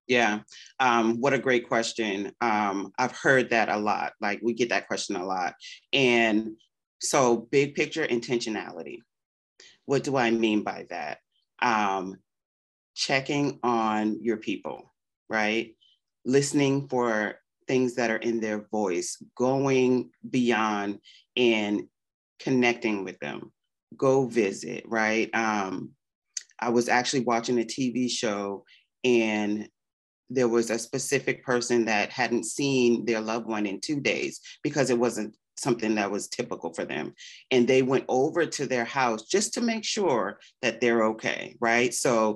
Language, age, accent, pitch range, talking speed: English, 30-49, American, 110-135 Hz, 145 wpm